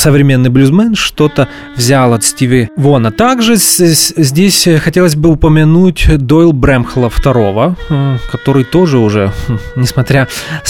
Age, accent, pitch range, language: 20-39, native, 130-165 Hz, Russian